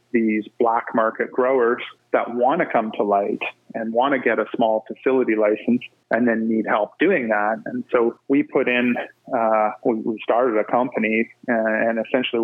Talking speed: 175 wpm